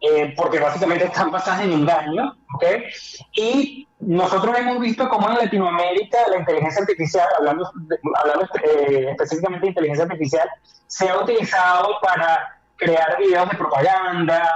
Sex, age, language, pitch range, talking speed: male, 30-49, Spanish, 160-210 Hz, 145 wpm